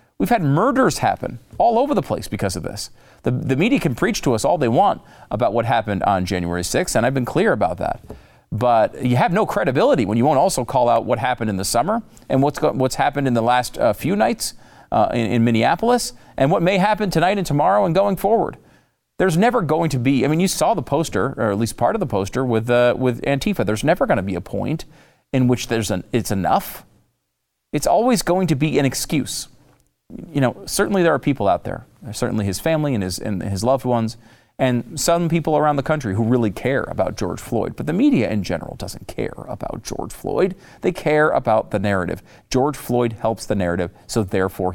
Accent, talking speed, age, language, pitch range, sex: American, 225 wpm, 40-59, English, 110-155 Hz, male